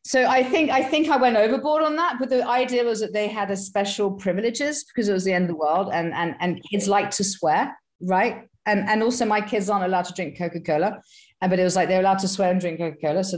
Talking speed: 260 wpm